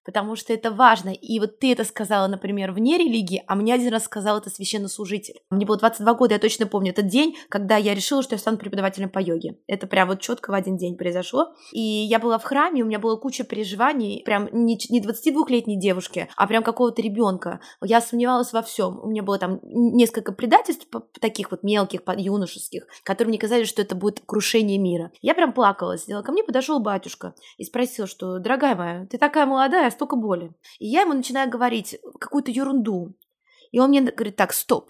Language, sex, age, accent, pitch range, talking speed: Russian, female, 20-39, native, 195-250 Hz, 200 wpm